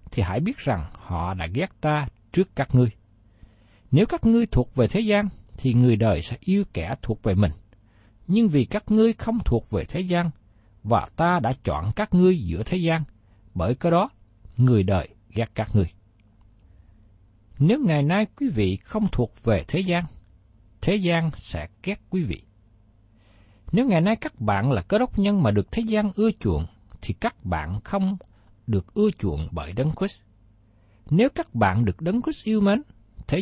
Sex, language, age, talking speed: male, Vietnamese, 60-79, 185 wpm